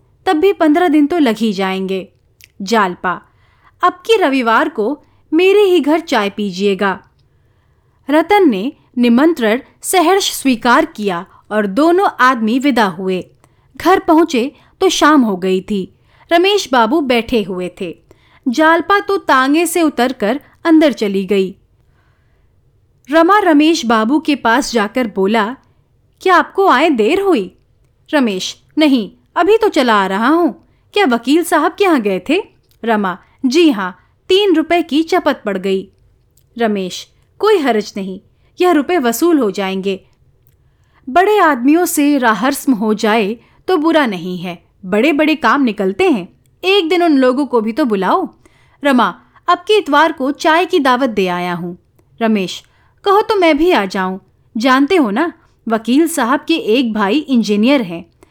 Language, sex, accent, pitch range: Hindi, female, native, 210-335 Hz